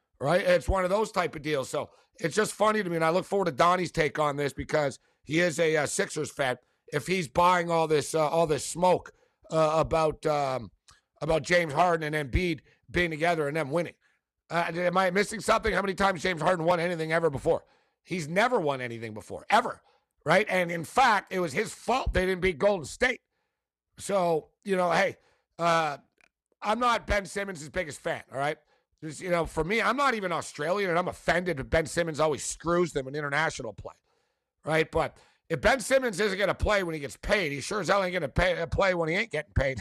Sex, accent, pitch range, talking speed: male, American, 160-195 Hz, 220 wpm